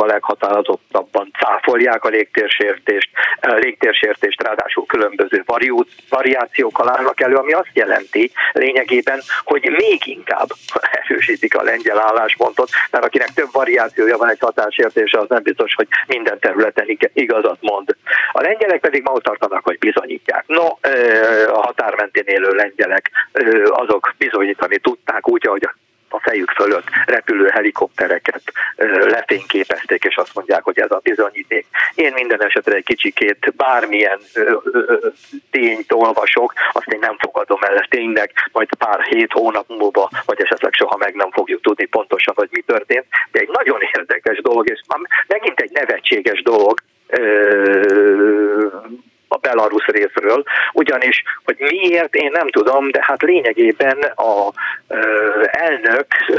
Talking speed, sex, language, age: 135 wpm, male, Hungarian, 50-69